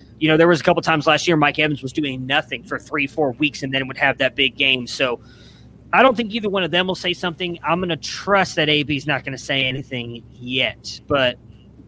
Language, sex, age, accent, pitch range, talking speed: English, male, 20-39, American, 130-160 Hz, 245 wpm